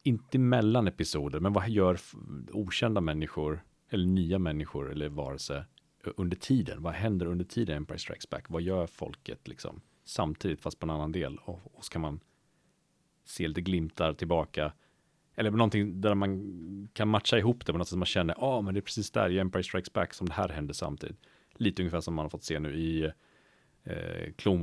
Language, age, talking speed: Swedish, 30-49, 200 wpm